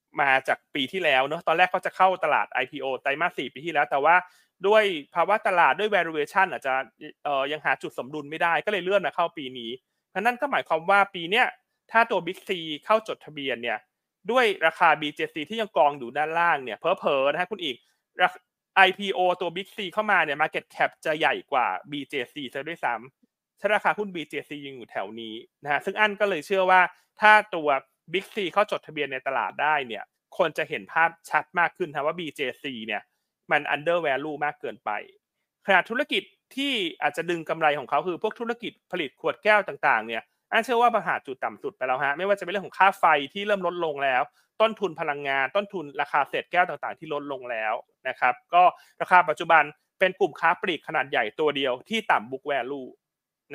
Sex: male